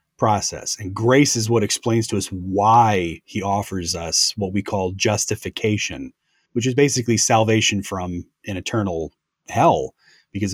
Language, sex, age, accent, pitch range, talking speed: English, male, 30-49, American, 100-115 Hz, 140 wpm